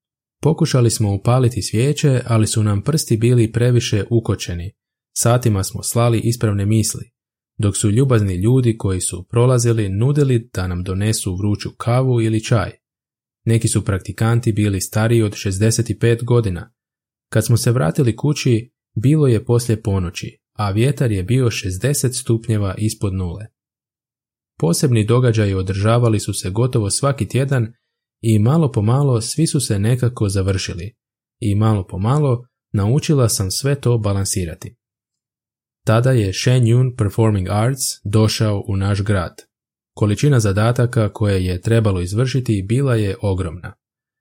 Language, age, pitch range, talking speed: Croatian, 20-39, 105-125 Hz, 135 wpm